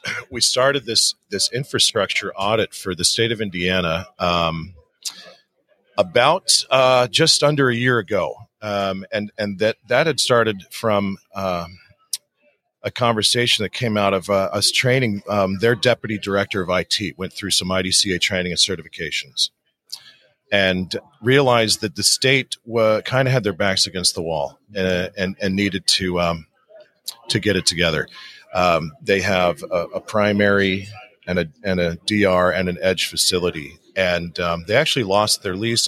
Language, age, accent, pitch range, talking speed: English, 40-59, American, 90-115 Hz, 160 wpm